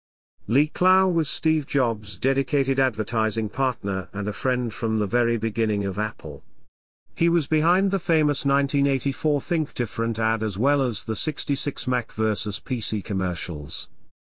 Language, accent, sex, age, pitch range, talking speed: English, British, male, 50-69, 100-145 Hz, 145 wpm